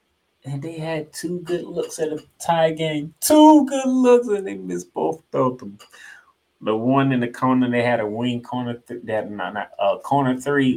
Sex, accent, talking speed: male, American, 185 wpm